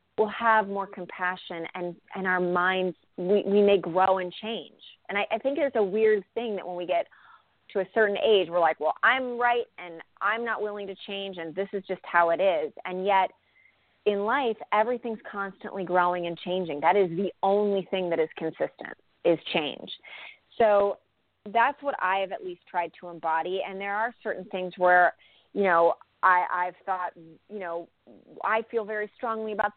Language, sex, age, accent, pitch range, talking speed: English, female, 30-49, American, 180-215 Hz, 190 wpm